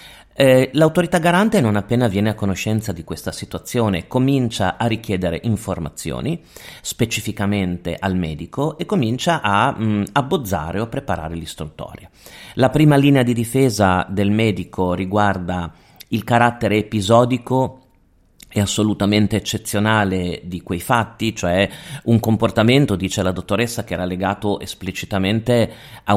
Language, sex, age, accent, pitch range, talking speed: Italian, male, 30-49, native, 90-115 Hz, 125 wpm